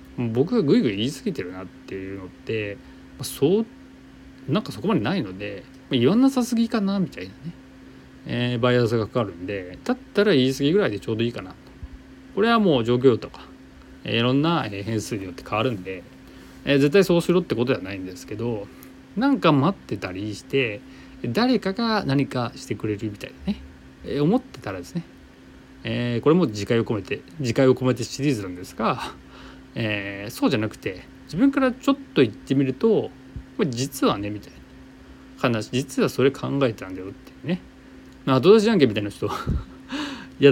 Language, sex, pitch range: Japanese, male, 95-135 Hz